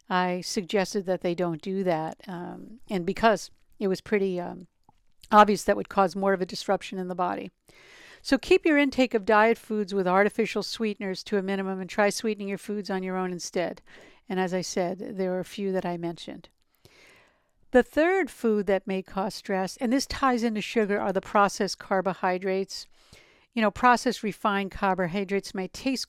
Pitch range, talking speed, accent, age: 185-215 Hz, 190 wpm, American, 60-79